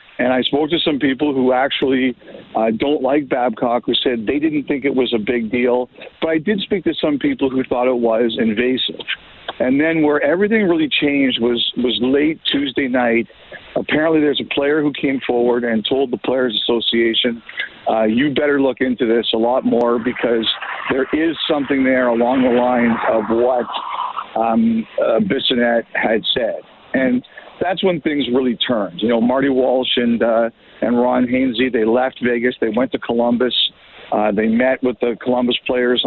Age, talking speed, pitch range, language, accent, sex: 50-69, 185 wpm, 120-140 Hz, English, American, male